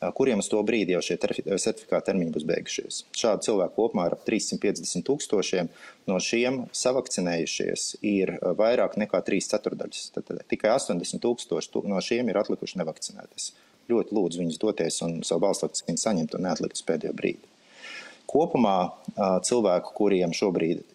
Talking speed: 140 wpm